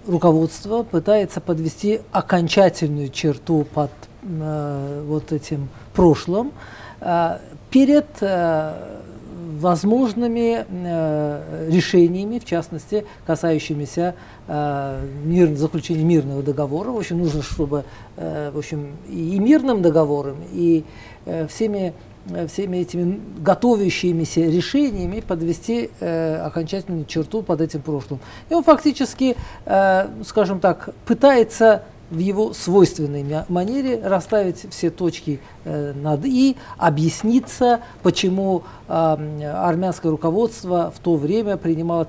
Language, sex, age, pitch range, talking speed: Russian, male, 50-69, 155-205 Hz, 100 wpm